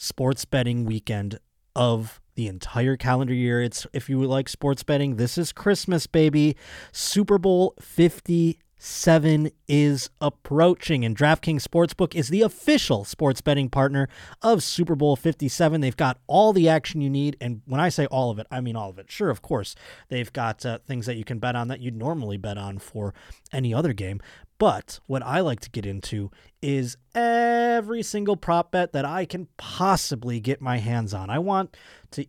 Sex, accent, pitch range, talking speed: male, American, 120-170 Hz, 185 wpm